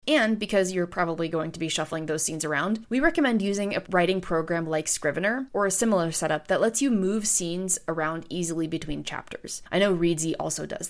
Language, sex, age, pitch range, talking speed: English, female, 30-49, 175-230 Hz, 205 wpm